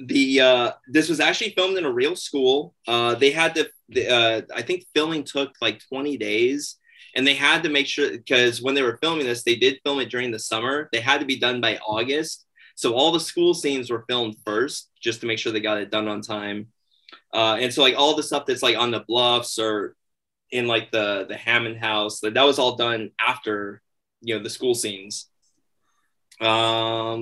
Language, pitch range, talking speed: English, 110-145 Hz, 215 wpm